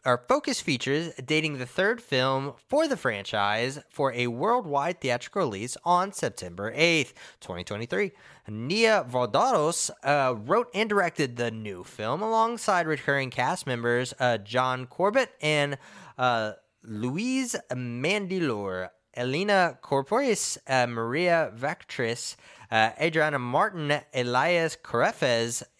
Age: 20-39